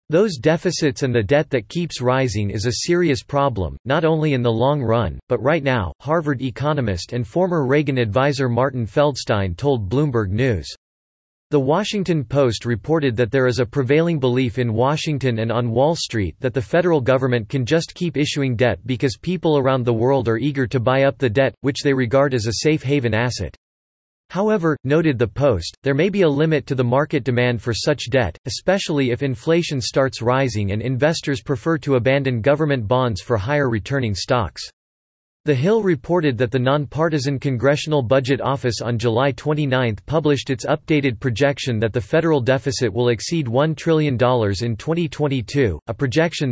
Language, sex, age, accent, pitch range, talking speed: English, male, 40-59, American, 120-150 Hz, 175 wpm